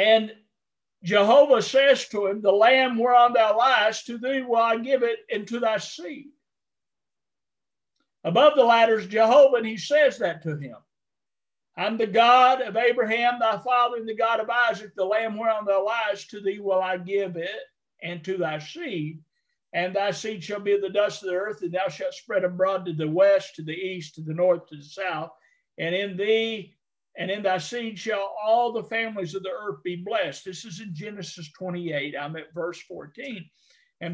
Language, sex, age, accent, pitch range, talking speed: English, male, 50-69, American, 180-230 Hz, 195 wpm